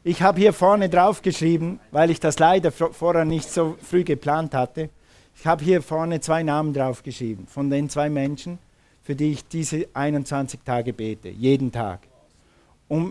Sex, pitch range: male, 130-170 Hz